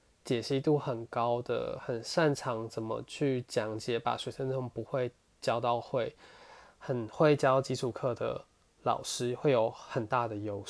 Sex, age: male, 20-39